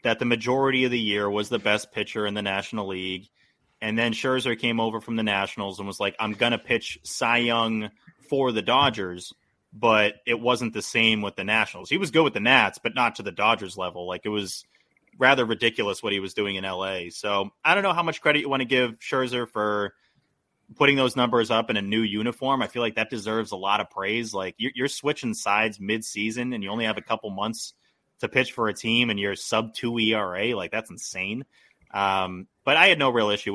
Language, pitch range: English, 100-130 Hz